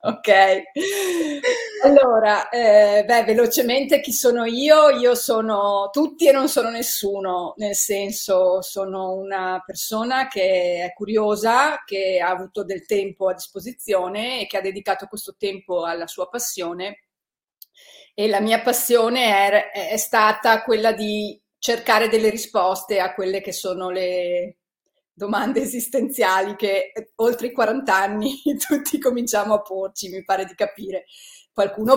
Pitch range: 190-240 Hz